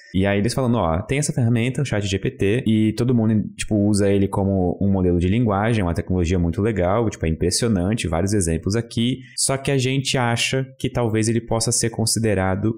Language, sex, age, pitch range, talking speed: Portuguese, male, 20-39, 90-115 Hz, 200 wpm